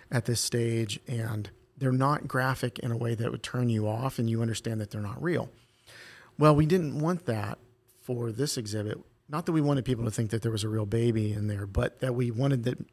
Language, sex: English, male